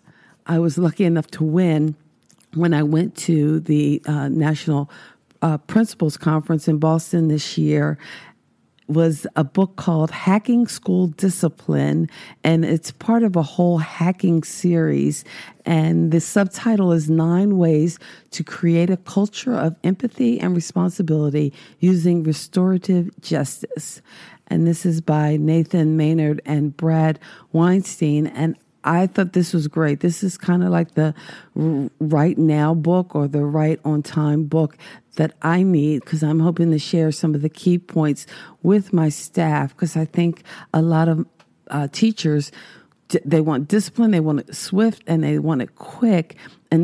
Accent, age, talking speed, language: American, 50-69, 150 wpm, English